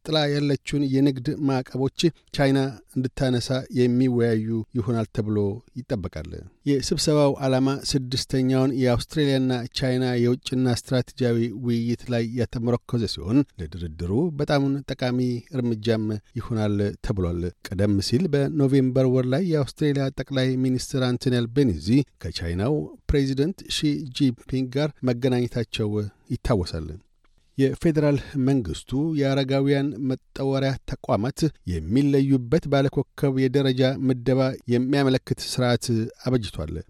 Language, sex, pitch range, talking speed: Amharic, male, 120-140 Hz, 90 wpm